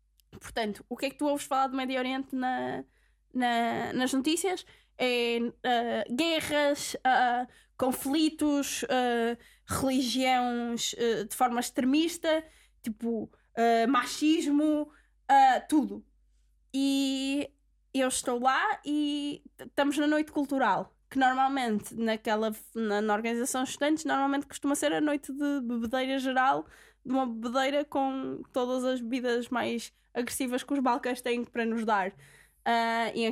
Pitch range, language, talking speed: 235-290 Hz, English, 135 wpm